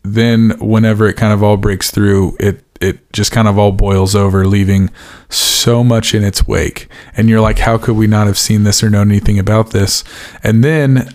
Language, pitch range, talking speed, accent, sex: English, 100-115 Hz, 210 wpm, American, male